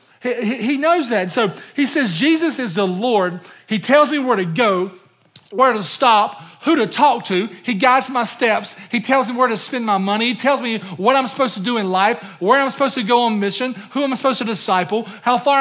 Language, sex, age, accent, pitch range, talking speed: English, male, 40-59, American, 210-270 Hz, 225 wpm